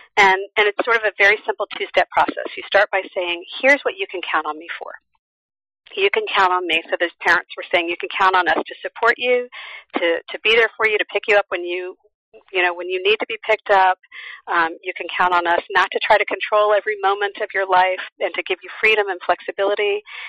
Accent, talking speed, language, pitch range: American, 250 wpm, English, 185-230 Hz